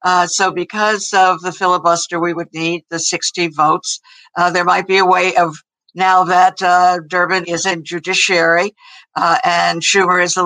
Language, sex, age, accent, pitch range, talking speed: English, female, 60-79, American, 170-185 Hz, 180 wpm